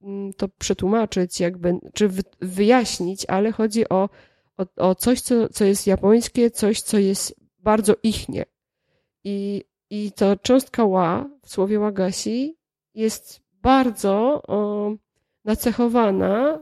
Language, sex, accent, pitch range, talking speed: Polish, female, native, 185-230 Hz, 115 wpm